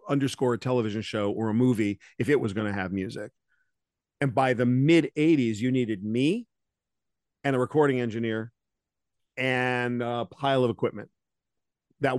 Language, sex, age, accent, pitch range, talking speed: English, male, 50-69, American, 115-150 Hz, 160 wpm